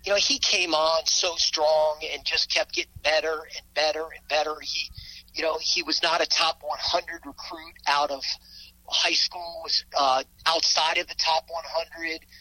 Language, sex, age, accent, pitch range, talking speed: English, male, 40-59, American, 155-185 Hz, 180 wpm